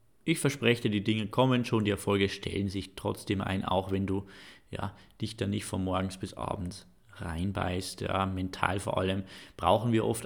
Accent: German